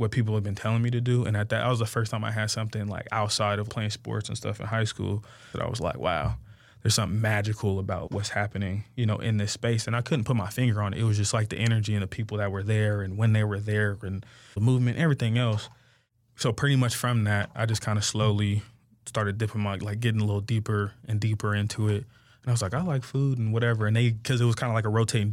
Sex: male